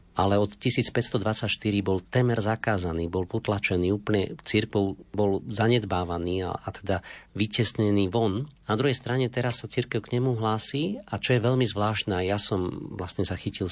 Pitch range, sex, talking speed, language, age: 90-115 Hz, male, 155 wpm, Slovak, 40-59